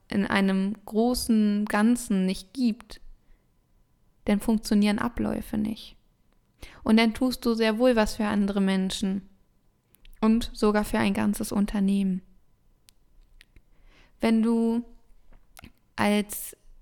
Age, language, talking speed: 20-39, German, 105 wpm